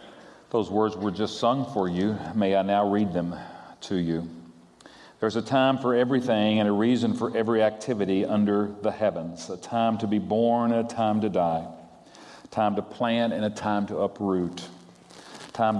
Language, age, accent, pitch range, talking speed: English, 40-59, American, 95-115 Hz, 180 wpm